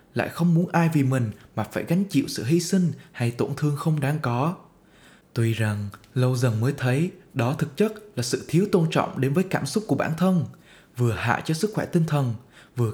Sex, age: male, 20-39